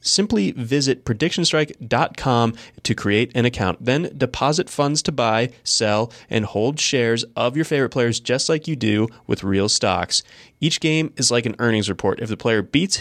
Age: 20-39